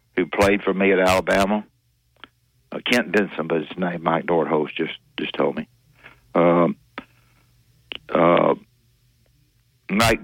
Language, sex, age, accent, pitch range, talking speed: English, male, 60-79, American, 85-120 Hz, 125 wpm